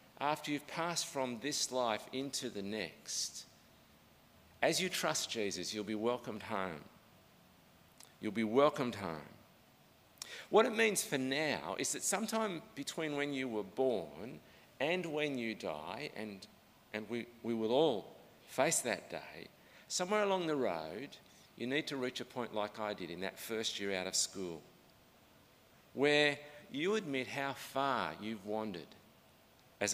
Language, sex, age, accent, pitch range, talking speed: English, male, 50-69, Australian, 105-145 Hz, 150 wpm